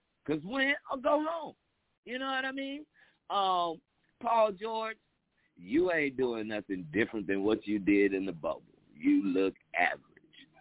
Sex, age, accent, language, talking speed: male, 50-69, American, English, 160 wpm